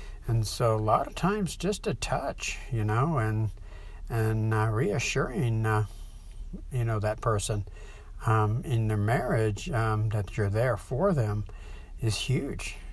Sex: male